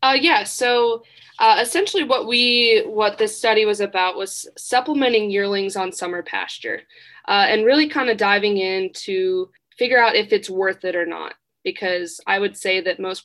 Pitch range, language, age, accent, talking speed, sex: 185-255 Hz, English, 20-39, American, 180 wpm, female